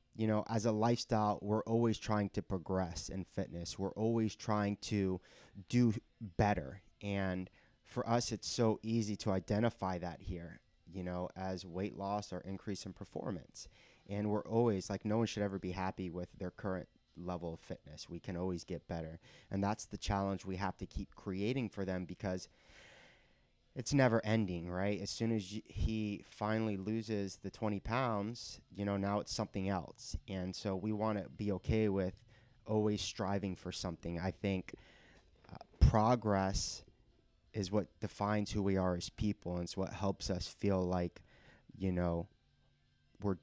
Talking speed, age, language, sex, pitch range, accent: 170 wpm, 30-49, English, male, 90-105 Hz, American